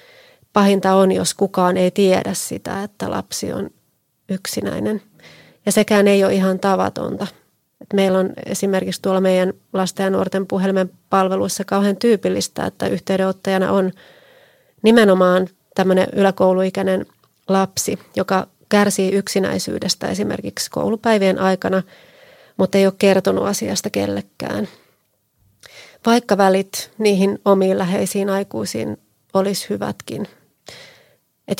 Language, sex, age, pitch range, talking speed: Finnish, female, 30-49, 185-200 Hz, 110 wpm